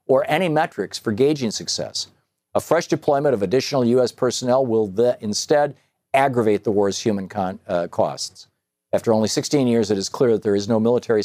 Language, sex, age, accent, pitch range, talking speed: English, male, 50-69, American, 95-125 Hz, 185 wpm